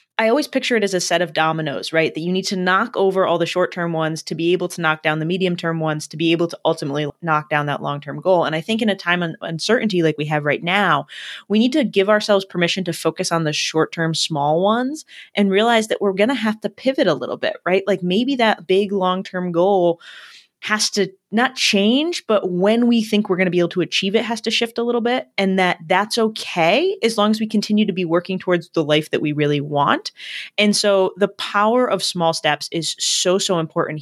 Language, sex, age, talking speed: English, female, 20-39, 240 wpm